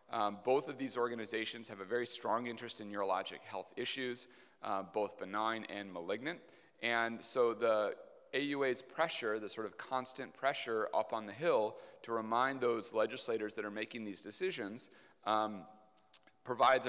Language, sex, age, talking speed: English, male, 30-49, 155 wpm